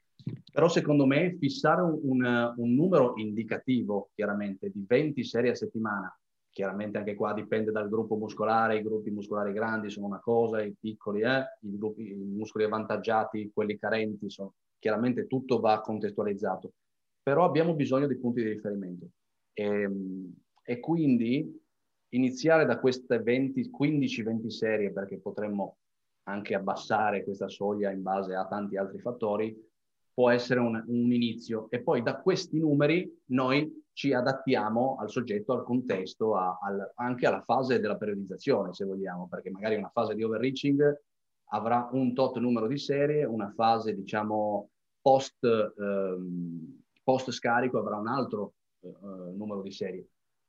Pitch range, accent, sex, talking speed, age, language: 105-130 Hz, native, male, 145 wpm, 30-49, Italian